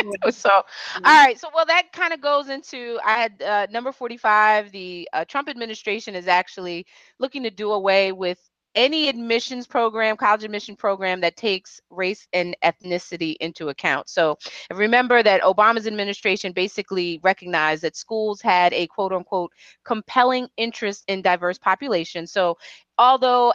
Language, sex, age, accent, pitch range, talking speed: English, female, 30-49, American, 170-210 Hz, 150 wpm